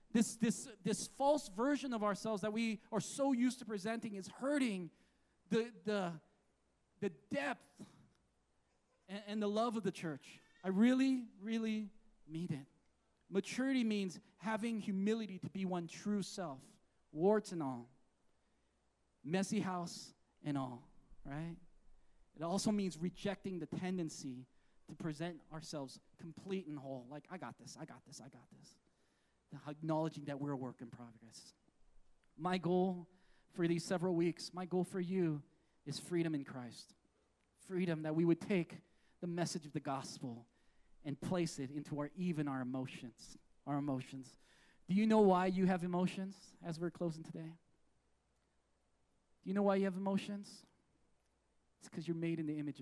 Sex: male